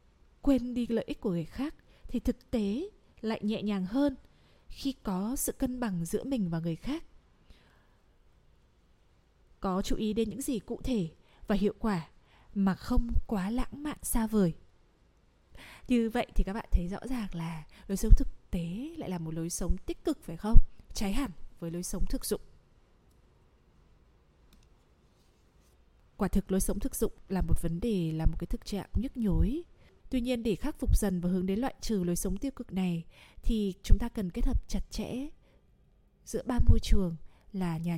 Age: 20-39